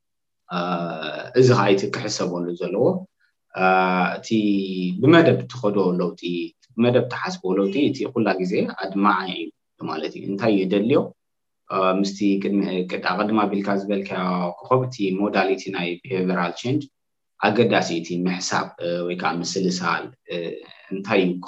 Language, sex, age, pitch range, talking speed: English, male, 20-39, 90-115 Hz, 65 wpm